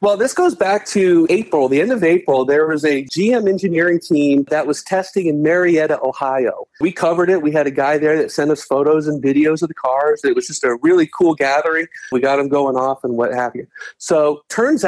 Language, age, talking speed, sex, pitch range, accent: English, 40-59, 230 wpm, male, 140-180 Hz, American